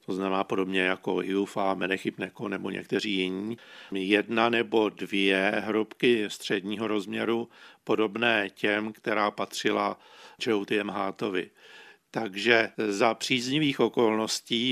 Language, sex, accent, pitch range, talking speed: Czech, male, native, 100-115 Hz, 100 wpm